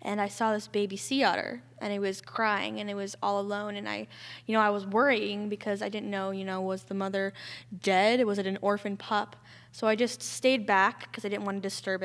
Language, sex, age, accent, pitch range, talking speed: English, female, 10-29, American, 195-215 Hz, 245 wpm